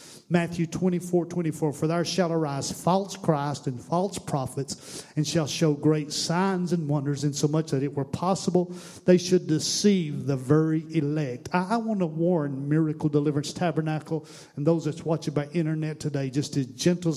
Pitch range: 150-180 Hz